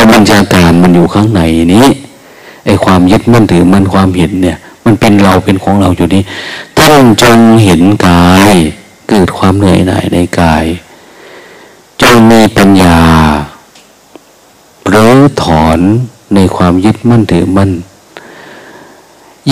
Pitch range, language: 90-115 Hz, Thai